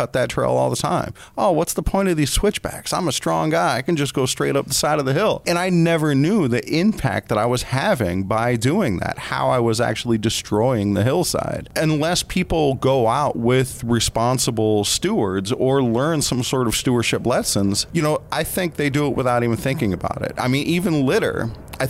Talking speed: 215 wpm